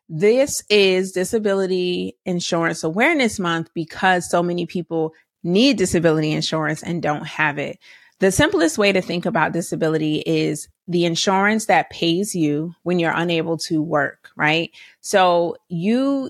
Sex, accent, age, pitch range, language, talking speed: female, American, 30-49, 155-195 Hz, English, 140 wpm